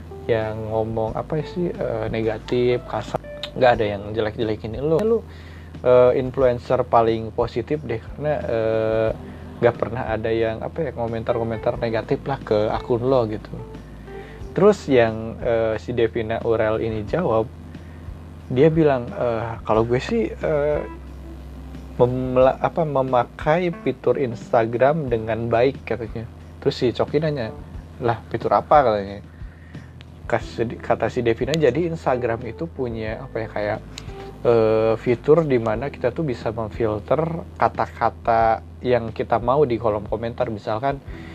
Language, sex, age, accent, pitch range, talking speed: Indonesian, male, 20-39, native, 110-130 Hz, 130 wpm